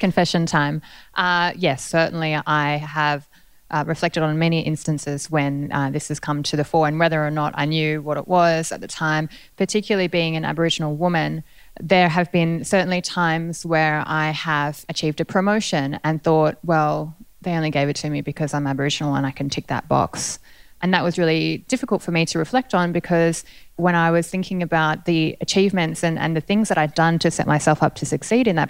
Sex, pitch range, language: female, 150-175 Hz, English